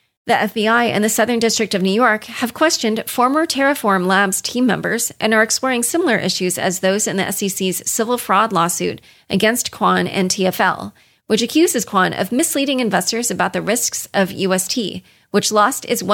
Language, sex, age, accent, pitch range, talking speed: English, female, 30-49, American, 190-240 Hz, 175 wpm